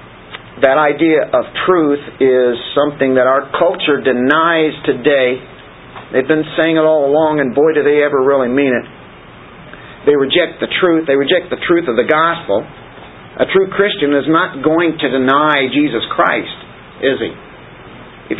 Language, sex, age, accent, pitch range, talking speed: English, male, 50-69, American, 125-160 Hz, 160 wpm